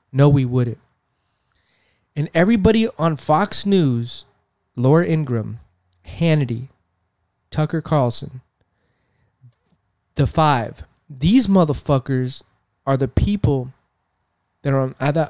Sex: male